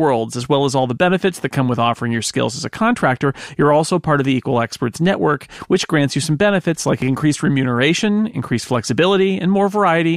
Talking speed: 210 wpm